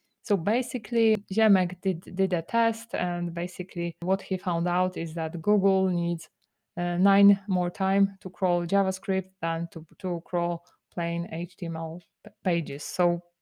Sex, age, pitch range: female, 20-39, 170-200 Hz